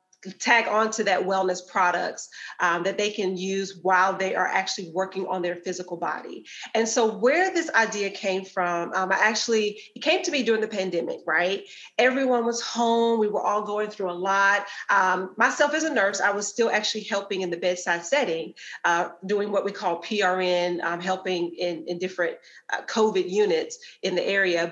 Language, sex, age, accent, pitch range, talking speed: English, female, 30-49, American, 185-235 Hz, 190 wpm